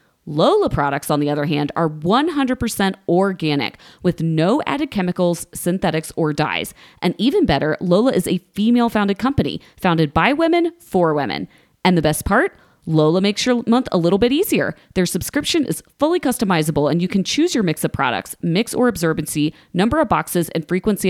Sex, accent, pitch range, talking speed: female, American, 160-235 Hz, 180 wpm